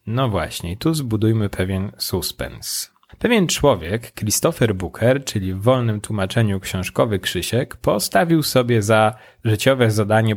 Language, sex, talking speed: Polish, male, 120 wpm